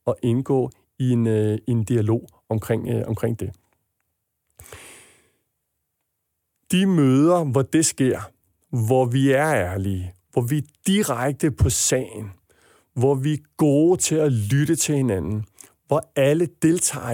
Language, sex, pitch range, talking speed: Danish, male, 115-150 Hz, 135 wpm